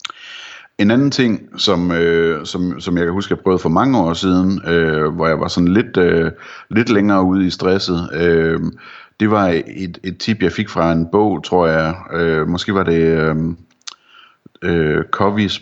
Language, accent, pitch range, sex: Danish, native, 85-100 Hz, male